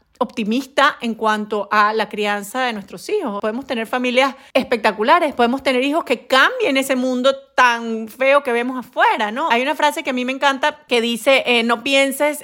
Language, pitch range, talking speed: Spanish, 235-295 Hz, 190 wpm